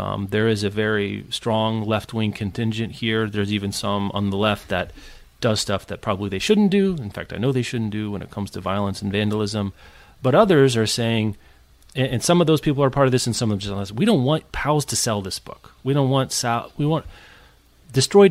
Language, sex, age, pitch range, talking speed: English, male, 30-49, 100-135 Hz, 235 wpm